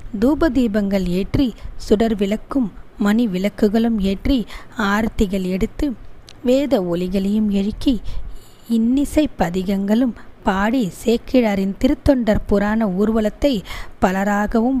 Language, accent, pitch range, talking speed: Tamil, native, 200-255 Hz, 85 wpm